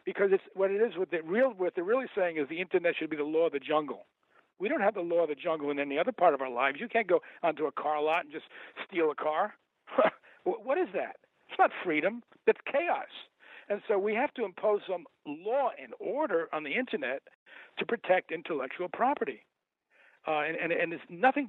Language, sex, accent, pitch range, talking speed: English, male, American, 150-215 Hz, 225 wpm